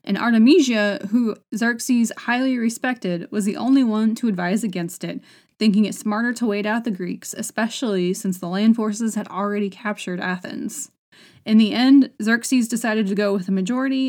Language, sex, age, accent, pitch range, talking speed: English, female, 20-39, American, 205-250 Hz, 175 wpm